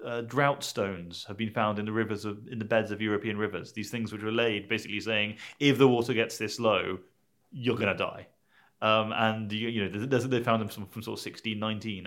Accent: British